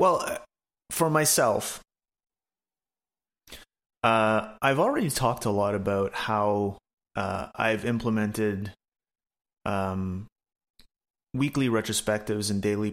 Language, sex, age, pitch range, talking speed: English, male, 30-49, 105-130 Hz, 90 wpm